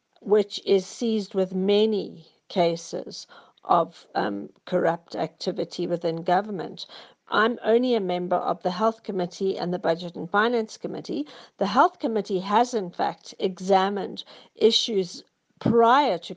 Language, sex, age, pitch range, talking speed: English, female, 50-69, 175-215 Hz, 130 wpm